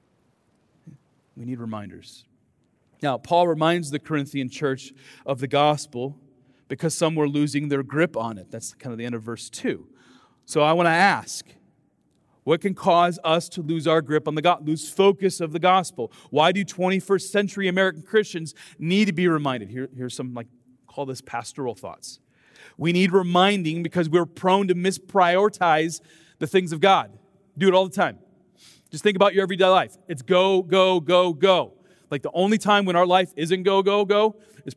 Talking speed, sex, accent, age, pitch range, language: 185 wpm, male, American, 40-59, 145-190 Hz, English